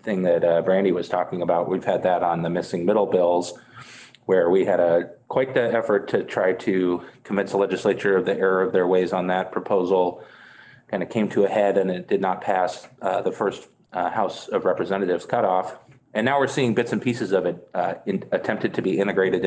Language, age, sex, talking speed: English, 30-49, male, 220 wpm